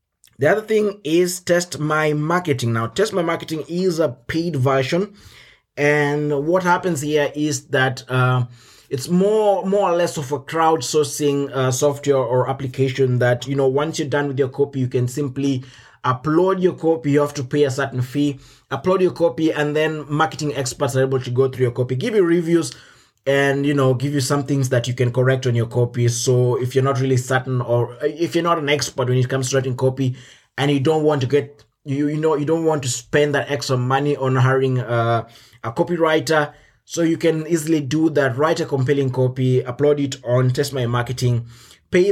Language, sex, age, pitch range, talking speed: English, male, 20-39, 130-155 Hz, 205 wpm